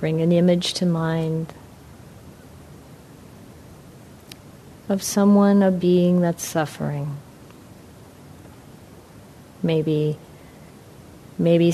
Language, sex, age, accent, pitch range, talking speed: English, female, 40-59, American, 150-170 Hz, 65 wpm